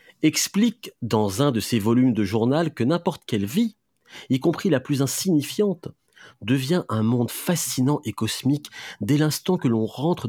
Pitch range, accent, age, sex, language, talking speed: 105-145 Hz, French, 40-59, male, French, 165 wpm